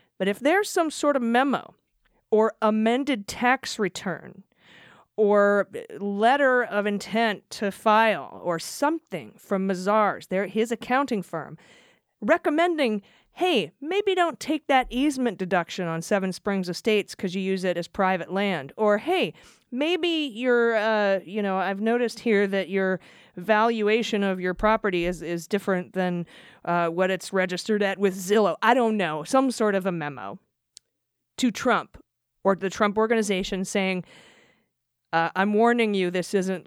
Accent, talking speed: American, 150 wpm